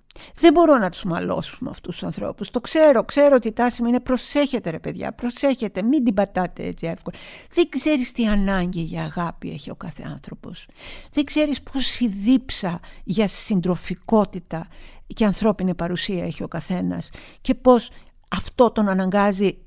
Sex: female